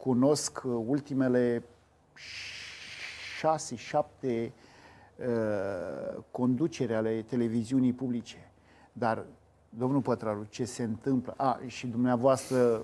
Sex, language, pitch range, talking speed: male, Romanian, 125-175 Hz, 85 wpm